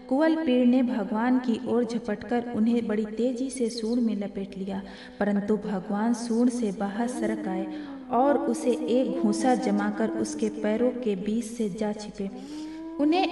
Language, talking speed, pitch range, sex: Hindi, 135 wpm, 220-270 Hz, female